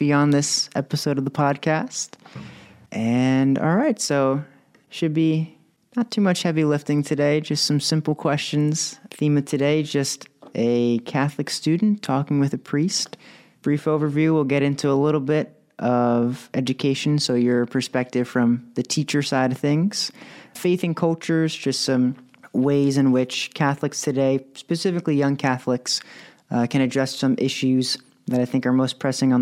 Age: 30-49